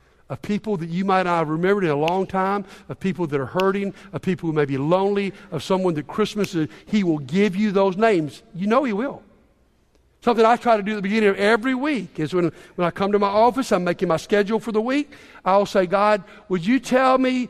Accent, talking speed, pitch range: American, 240 wpm, 185-245 Hz